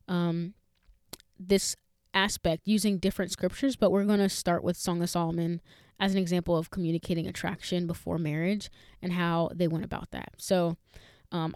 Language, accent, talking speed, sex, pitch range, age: English, American, 160 wpm, female, 175-200 Hz, 20-39